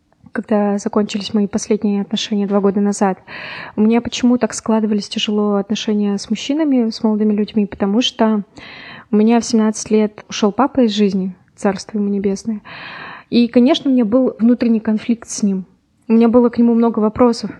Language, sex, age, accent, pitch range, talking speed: Russian, female, 20-39, native, 205-230 Hz, 170 wpm